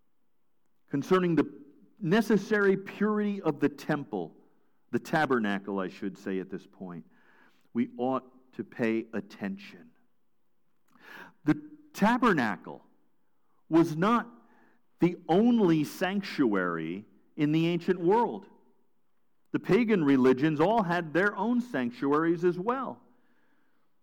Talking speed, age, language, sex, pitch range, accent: 100 wpm, 50-69, English, male, 125-210 Hz, American